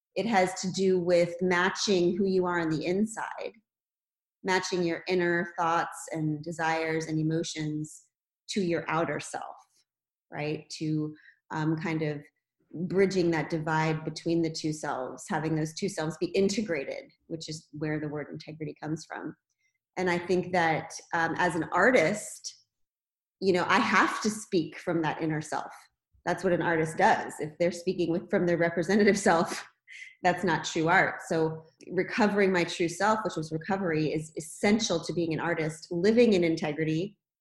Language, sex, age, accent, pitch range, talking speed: English, female, 30-49, American, 160-190 Hz, 165 wpm